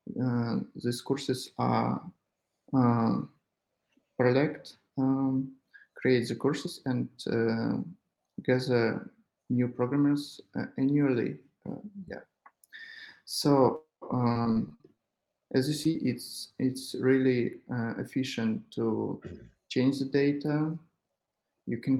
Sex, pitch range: male, 120-145 Hz